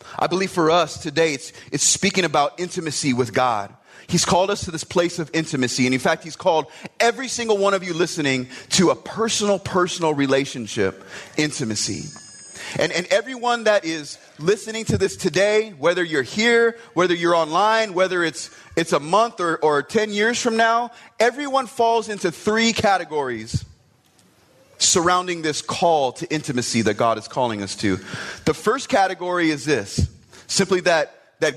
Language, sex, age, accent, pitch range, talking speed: English, male, 30-49, American, 150-200 Hz, 165 wpm